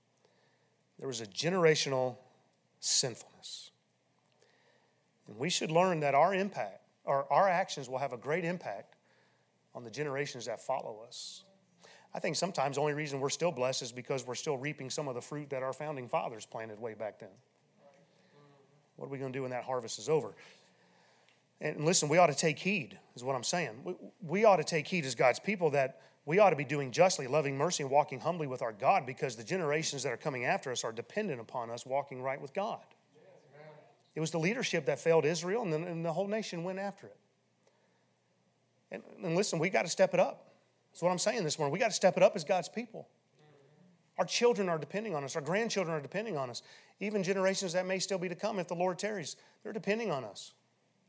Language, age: English, 30-49